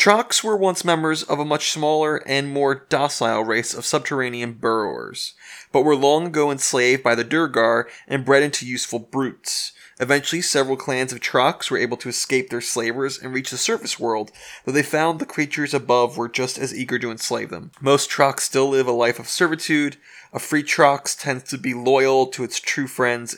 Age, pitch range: 20-39, 120-145 Hz